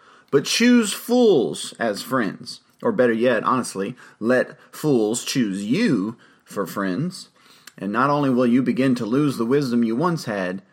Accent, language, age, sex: American, English, 30-49, male